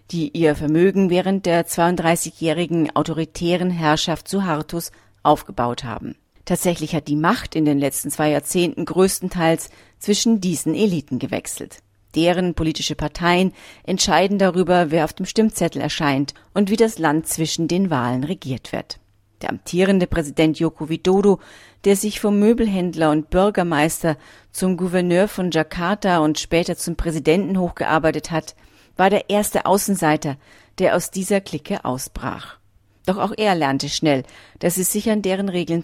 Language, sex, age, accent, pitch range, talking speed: German, female, 40-59, German, 150-185 Hz, 145 wpm